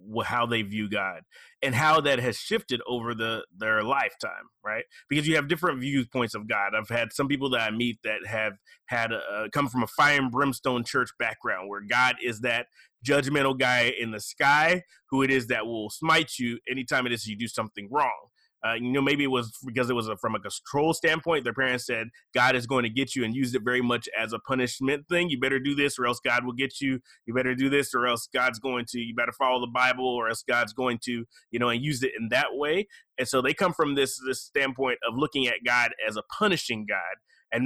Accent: American